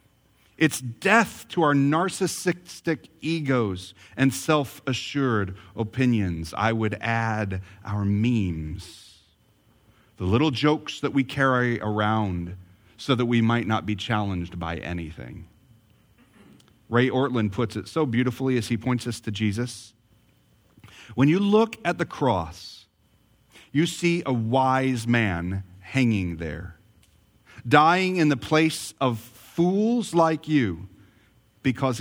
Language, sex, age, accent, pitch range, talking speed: English, male, 40-59, American, 105-150 Hz, 120 wpm